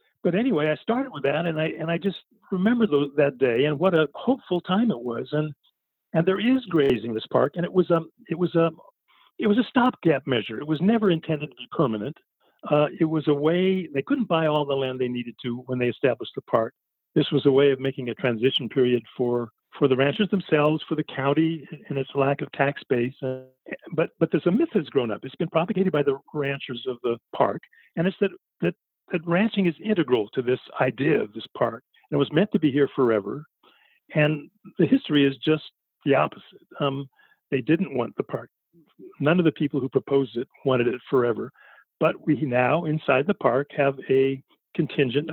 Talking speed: 210 wpm